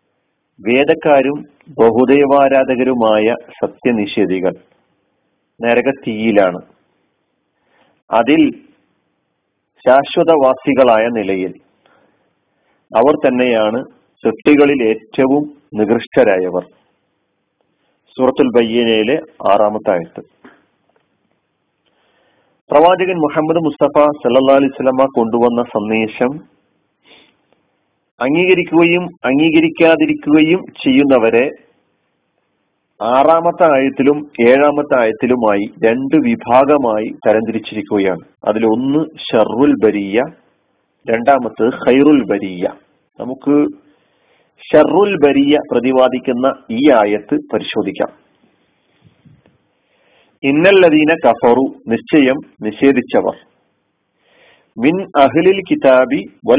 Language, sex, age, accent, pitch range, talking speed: Malayalam, male, 40-59, native, 115-150 Hz, 45 wpm